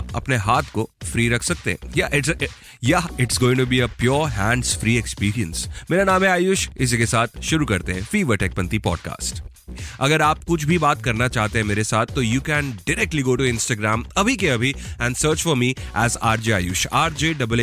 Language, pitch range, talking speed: Hindi, 110-155 Hz, 50 wpm